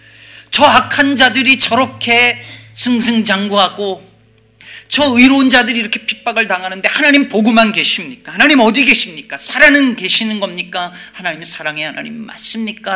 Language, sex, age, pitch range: Korean, male, 40-59, 140-225 Hz